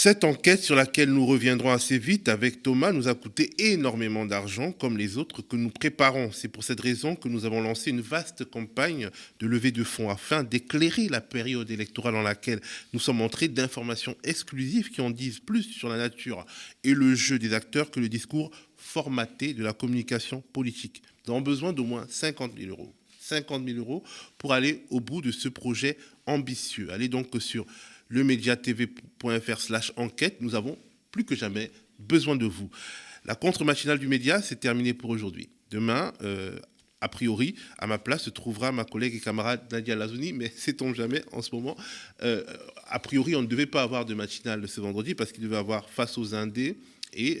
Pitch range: 110-135 Hz